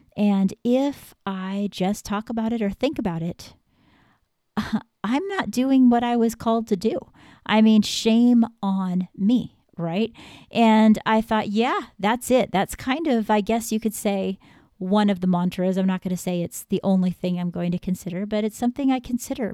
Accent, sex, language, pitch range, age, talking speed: American, female, English, 185-230 Hz, 40-59, 195 wpm